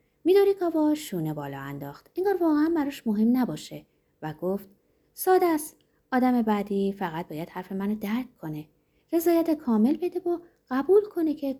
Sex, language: female, Persian